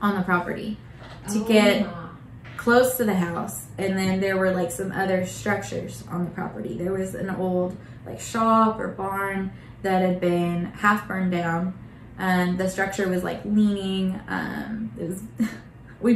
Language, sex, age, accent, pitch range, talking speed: English, female, 20-39, American, 175-215 Hz, 155 wpm